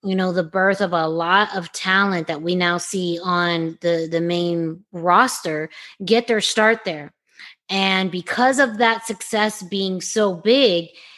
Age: 20-39